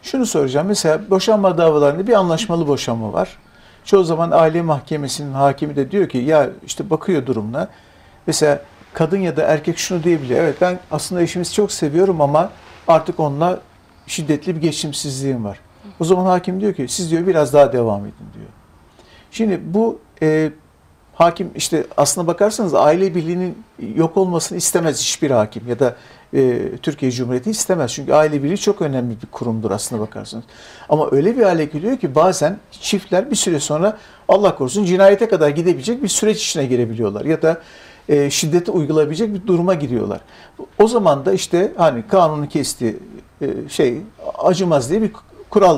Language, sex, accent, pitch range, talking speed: Turkish, male, native, 145-195 Hz, 155 wpm